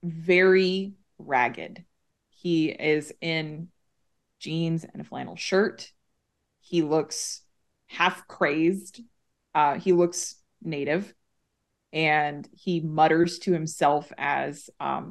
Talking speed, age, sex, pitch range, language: 100 wpm, 20-39, female, 160-190 Hz, English